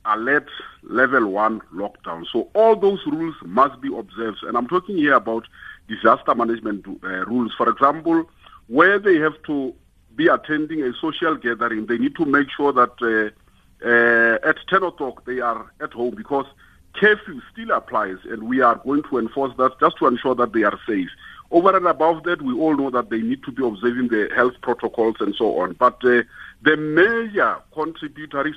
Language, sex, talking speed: English, male, 185 wpm